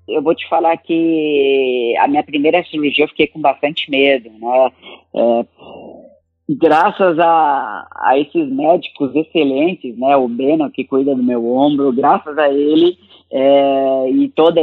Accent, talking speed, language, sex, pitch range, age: Brazilian, 145 wpm, Portuguese, female, 140-205 Hz, 20-39